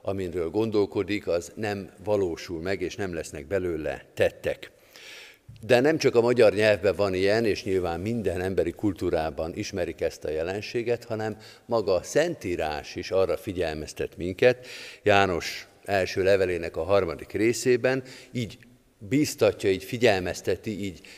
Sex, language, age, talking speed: male, Hungarian, 50-69, 135 wpm